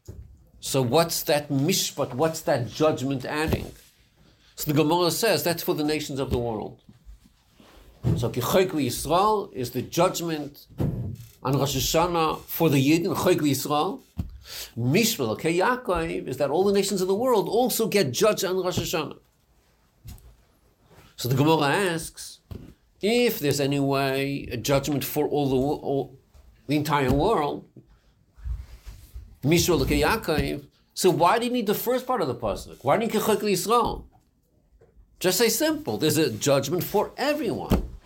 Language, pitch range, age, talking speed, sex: English, 135-195 Hz, 50-69, 135 wpm, male